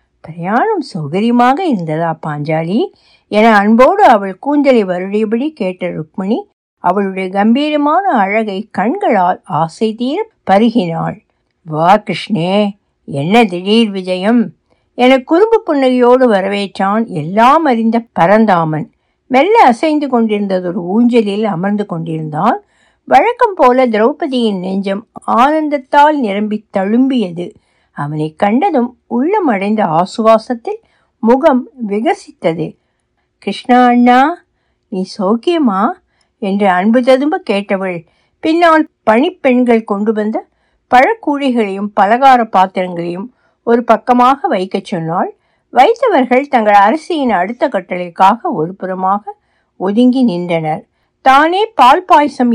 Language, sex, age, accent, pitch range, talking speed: Tamil, female, 60-79, native, 190-265 Hz, 90 wpm